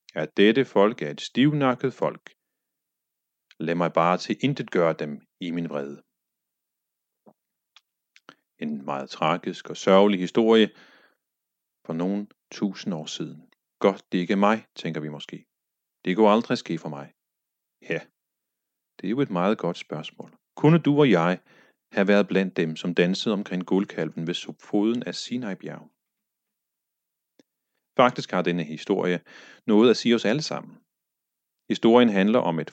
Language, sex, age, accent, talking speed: Danish, male, 40-59, native, 145 wpm